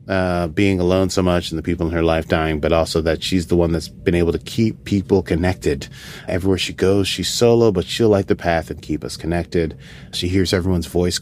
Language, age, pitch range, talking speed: English, 30-49, 85-115 Hz, 230 wpm